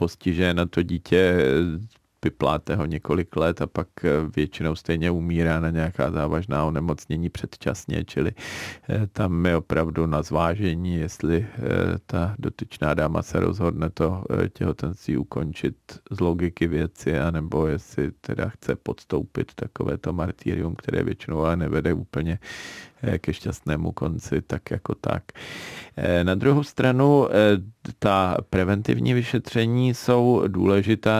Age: 40-59